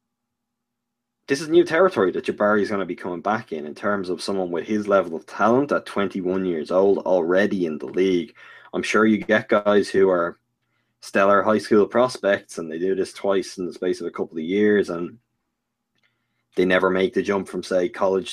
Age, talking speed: 20-39, 205 wpm